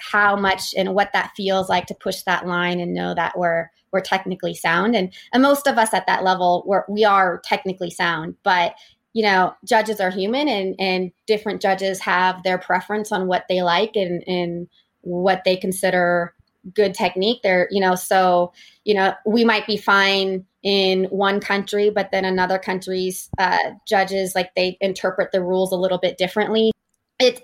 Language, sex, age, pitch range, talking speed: English, female, 20-39, 185-220 Hz, 185 wpm